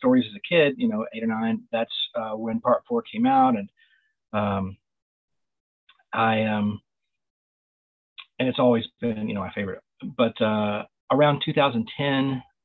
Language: English